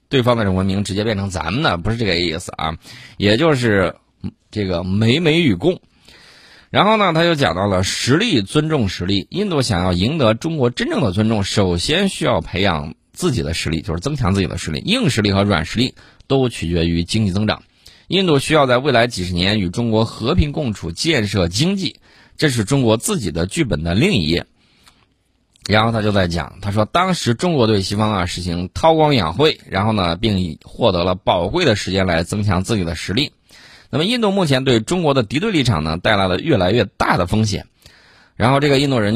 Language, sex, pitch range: Chinese, male, 90-130 Hz